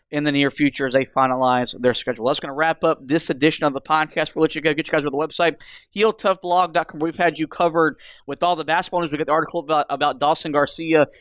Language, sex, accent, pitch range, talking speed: English, male, American, 150-175 Hz, 250 wpm